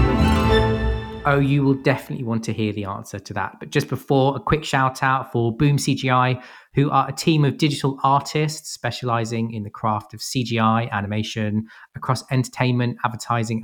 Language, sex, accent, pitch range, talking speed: English, male, British, 110-130 Hz, 165 wpm